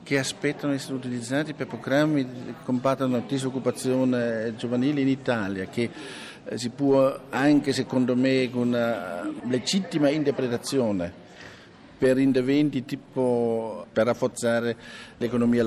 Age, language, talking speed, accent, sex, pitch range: 50-69, Italian, 115 wpm, native, male, 120-150 Hz